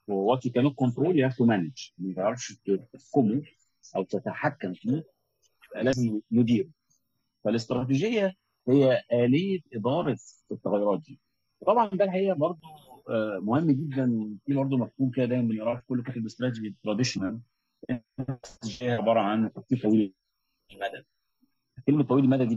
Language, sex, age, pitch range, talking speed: Arabic, male, 50-69, 110-140 Hz, 120 wpm